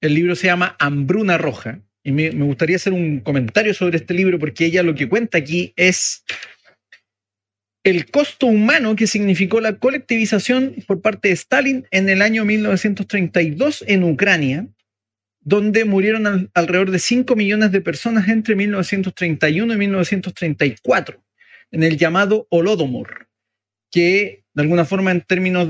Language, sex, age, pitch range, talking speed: Spanish, male, 40-59, 165-205 Hz, 145 wpm